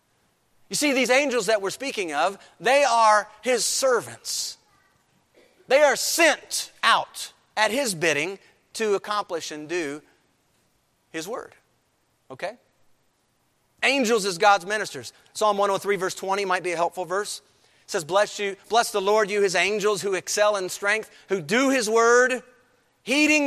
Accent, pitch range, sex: American, 160-240 Hz, male